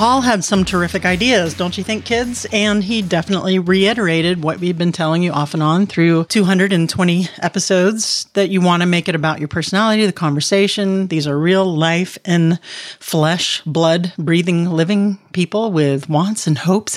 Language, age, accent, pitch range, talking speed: English, 40-59, American, 165-205 Hz, 175 wpm